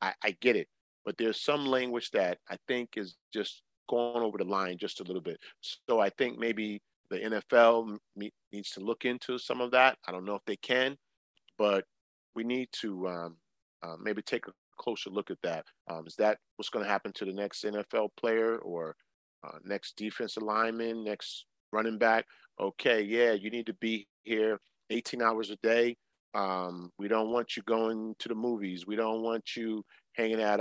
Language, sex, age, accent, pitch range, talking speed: English, male, 40-59, American, 100-120 Hz, 195 wpm